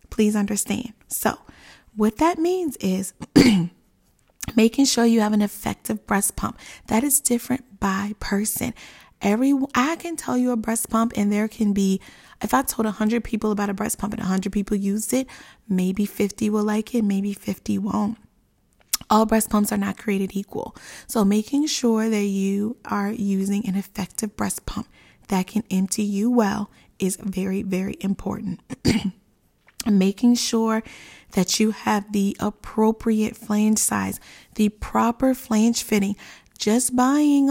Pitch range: 205-235 Hz